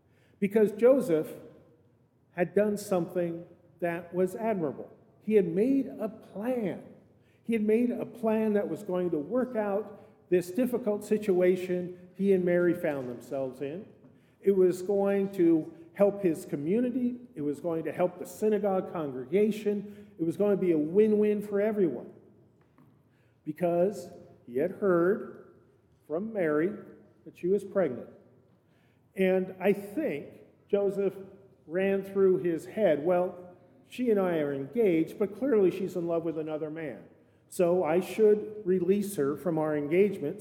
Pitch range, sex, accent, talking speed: 155-205 Hz, male, American, 145 wpm